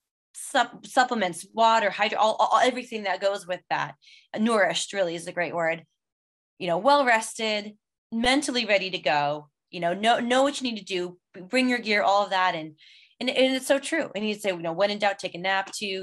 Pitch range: 190-255 Hz